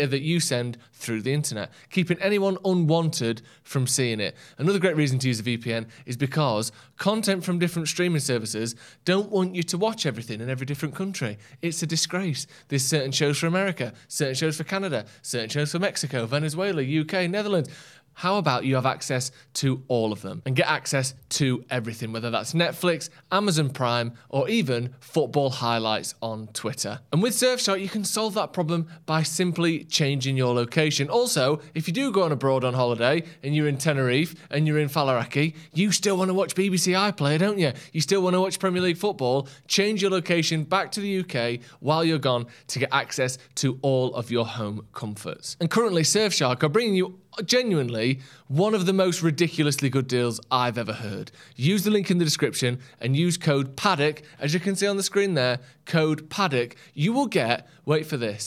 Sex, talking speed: male, 190 wpm